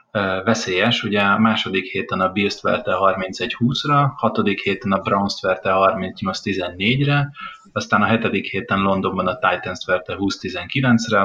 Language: Hungarian